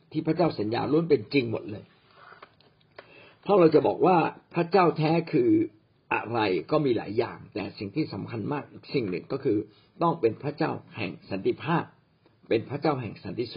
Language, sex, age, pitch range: Thai, male, 60-79, 135-170 Hz